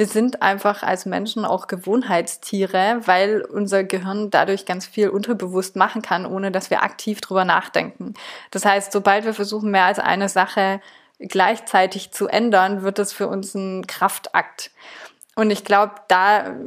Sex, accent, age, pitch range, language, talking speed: female, German, 20-39, 190-215 Hz, German, 160 wpm